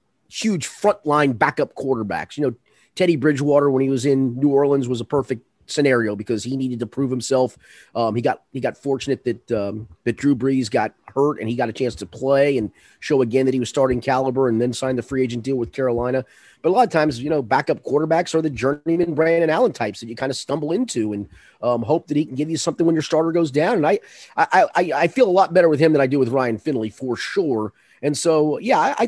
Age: 30-49